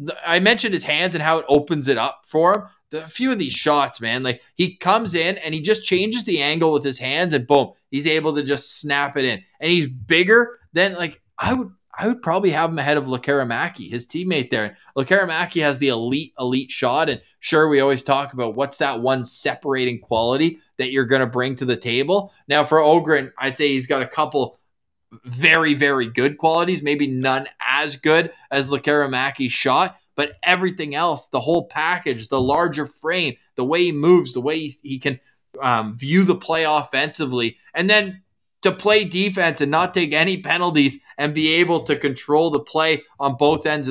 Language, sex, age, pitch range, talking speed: English, male, 20-39, 135-165 Hz, 200 wpm